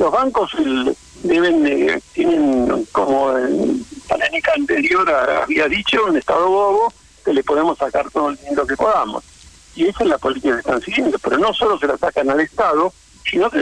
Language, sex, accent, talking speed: Spanish, male, Argentinian, 185 wpm